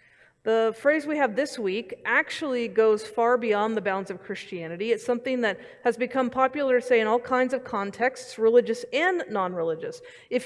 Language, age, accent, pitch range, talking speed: English, 40-59, American, 195-265 Hz, 170 wpm